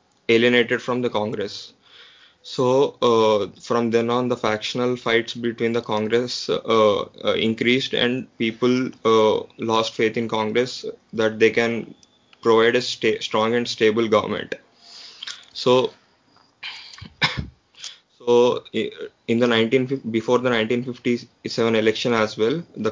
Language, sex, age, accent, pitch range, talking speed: English, male, 20-39, Indian, 110-125 Hz, 120 wpm